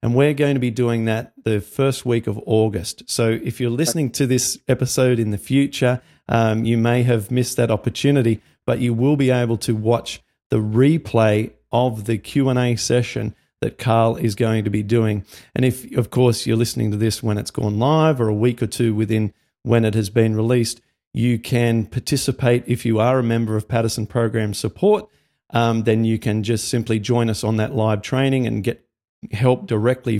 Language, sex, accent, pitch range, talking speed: English, male, Australian, 110-125 Hz, 200 wpm